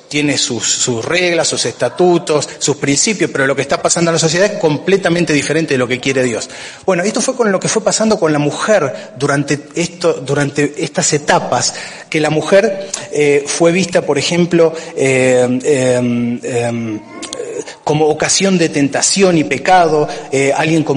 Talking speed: 170 wpm